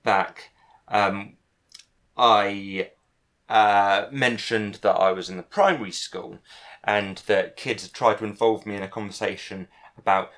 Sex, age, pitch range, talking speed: male, 30-49, 95-115 Hz, 135 wpm